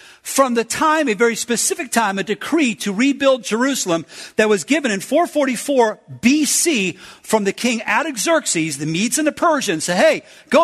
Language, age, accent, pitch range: English, 50-69, American, 185-270 Hz